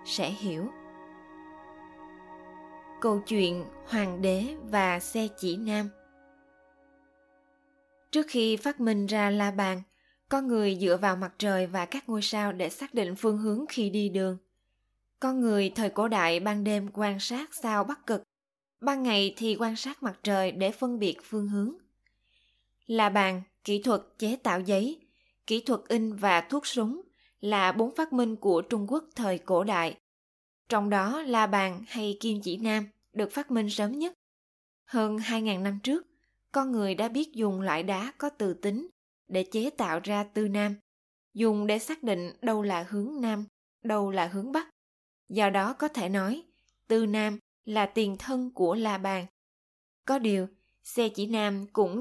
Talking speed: 170 wpm